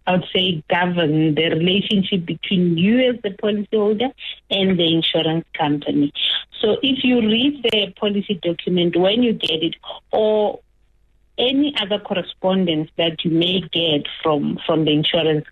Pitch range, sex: 170-210 Hz, female